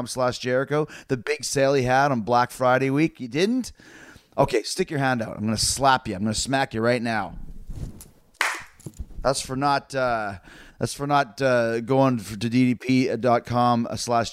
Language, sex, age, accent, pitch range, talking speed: English, male, 30-49, American, 125-165 Hz, 180 wpm